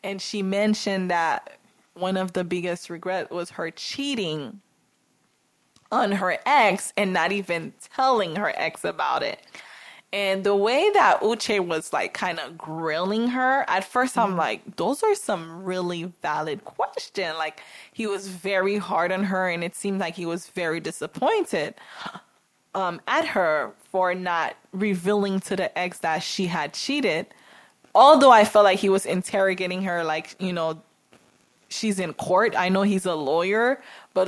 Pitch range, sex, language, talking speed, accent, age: 170-205 Hz, female, English, 160 wpm, American, 20-39